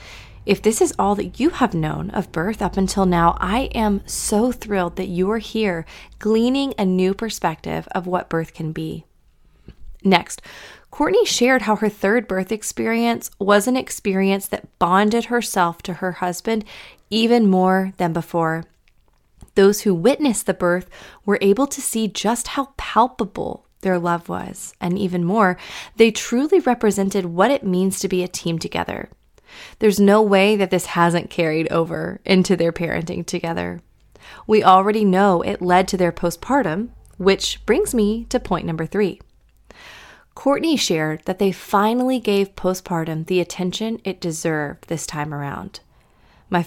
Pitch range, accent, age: 175-215 Hz, American, 20-39